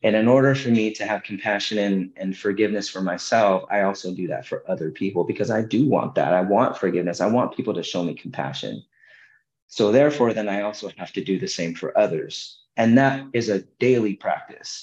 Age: 30-49